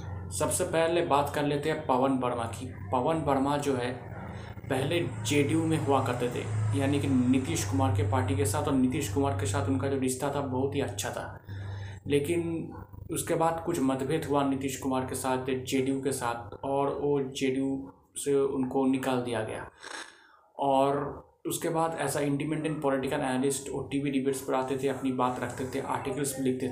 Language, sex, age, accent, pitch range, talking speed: Hindi, male, 20-39, native, 130-145 Hz, 180 wpm